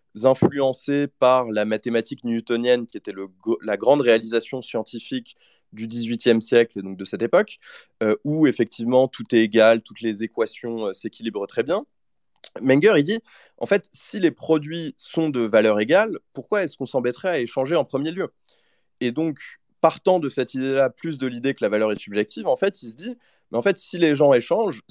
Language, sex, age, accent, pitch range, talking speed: French, male, 20-39, French, 115-155 Hz, 195 wpm